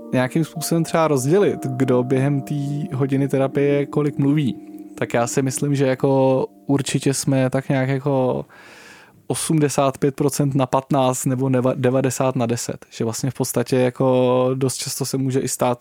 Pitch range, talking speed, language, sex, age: 120-140 Hz, 150 wpm, Czech, male, 20-39